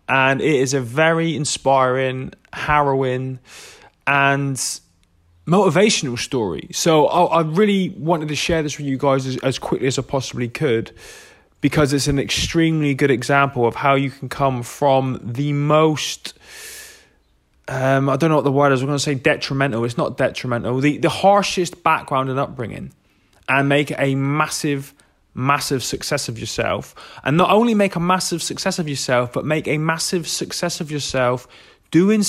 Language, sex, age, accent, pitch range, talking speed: English, male, 20-39, British, 130-155 Hz, 160 wpm